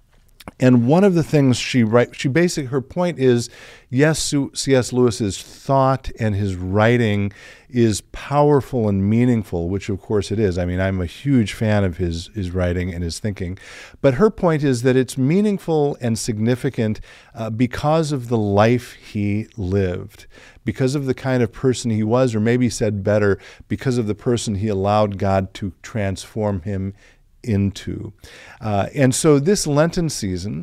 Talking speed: 170 wpm